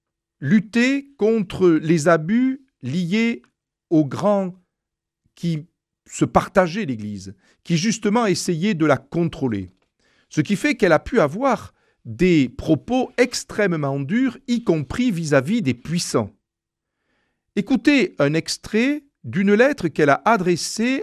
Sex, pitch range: male, 130-200 Hz